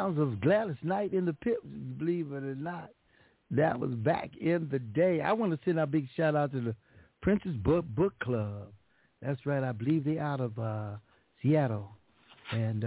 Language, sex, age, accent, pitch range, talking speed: English, male, 60-79, American, 110-140 Hz, 185 wpm